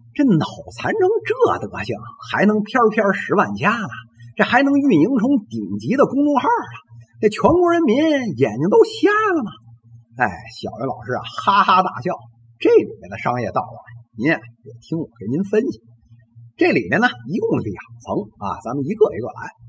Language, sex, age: Chinese, male, 50-69